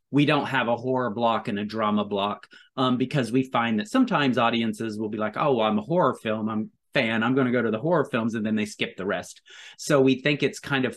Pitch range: 110-140 Hz